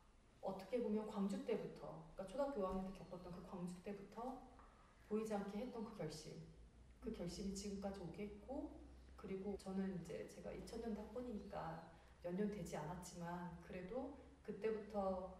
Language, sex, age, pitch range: Korean, female, 30-49, 180-215 Hz